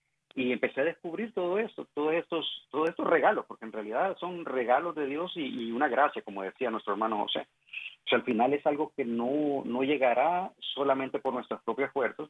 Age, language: 40-59, Spanish